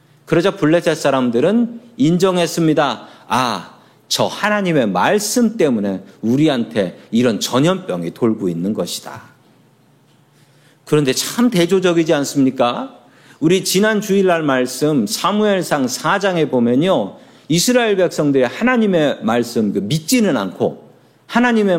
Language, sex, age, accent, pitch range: Korean, male, 40-59, native, 140-200 Hz